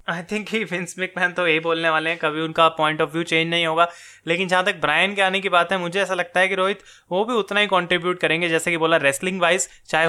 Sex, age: male, 20-39